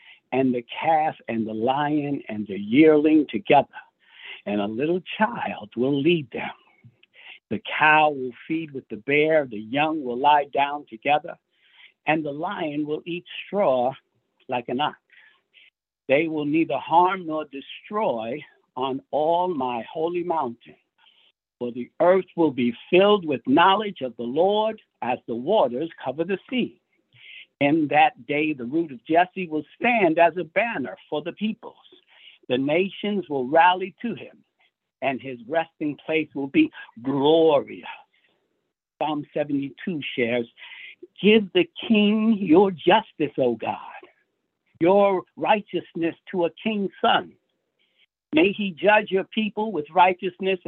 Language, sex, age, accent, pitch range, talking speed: English, male, 60-79, American, 140-195 Hz, 140 wpm